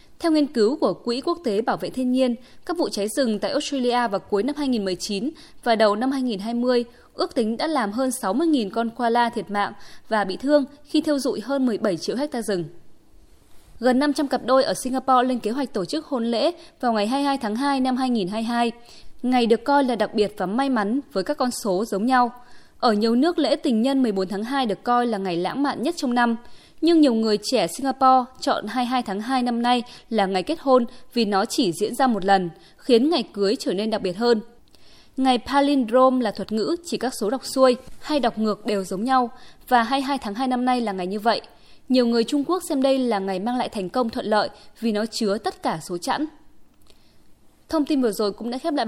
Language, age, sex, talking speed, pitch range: Vietnamese, 20-39, female, 225 wpm, 210-270 Hz